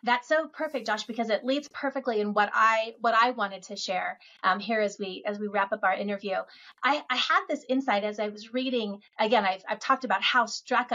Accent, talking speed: American, 230 wpm